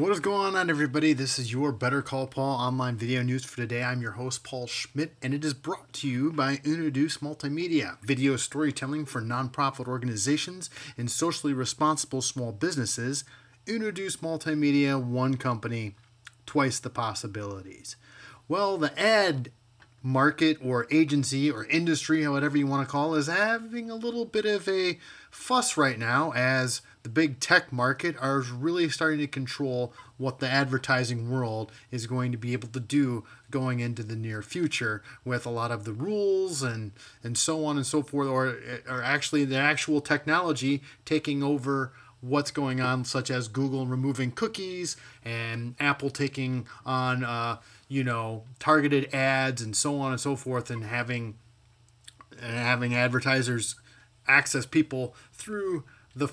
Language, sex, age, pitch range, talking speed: English, male, 30-49, 125-150 Hz, 160 wpm